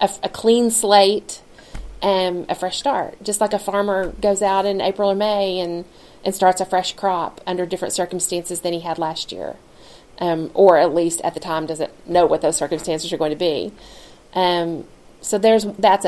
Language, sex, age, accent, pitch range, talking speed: English, female, 30-49, American, 170-200 Hz, 200 wpm